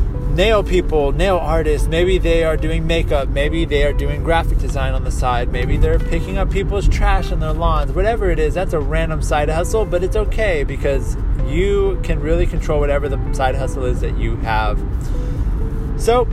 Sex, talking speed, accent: male, 190 wpm, American